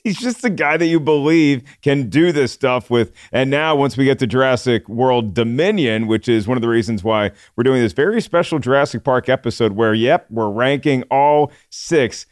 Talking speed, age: 205 wpm, 40-59